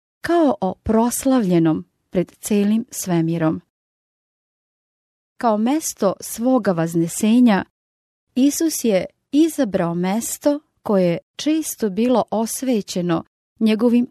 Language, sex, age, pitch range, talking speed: English, female, 30-49, 185-240 Hz, 85 wpm